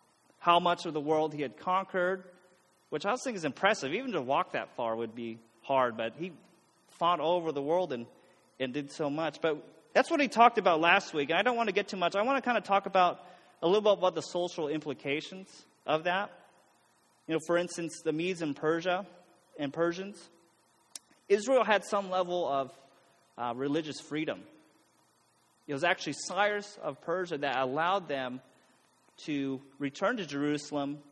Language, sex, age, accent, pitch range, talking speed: English, male, 30-49, American, 140-190 Hz, 185 wpm